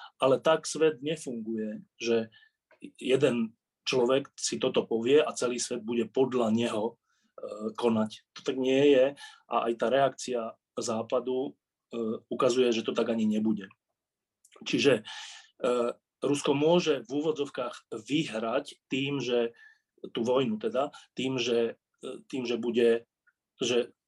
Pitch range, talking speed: 115-150 Hz, 130 wpm